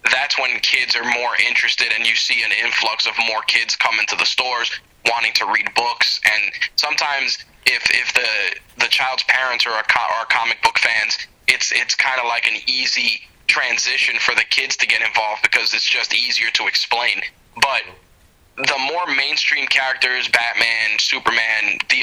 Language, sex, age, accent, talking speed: English, male, 20-39, American, 175 wpm